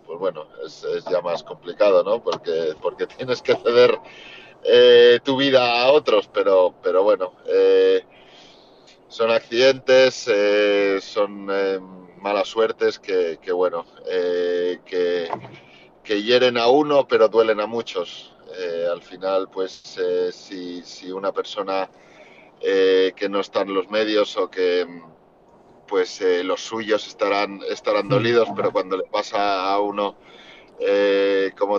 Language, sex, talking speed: Spanish, male, 140 wpm